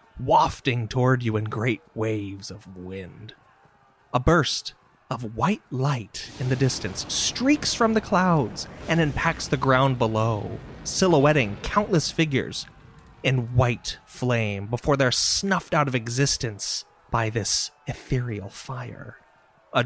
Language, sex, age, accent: English, male, 30-49, American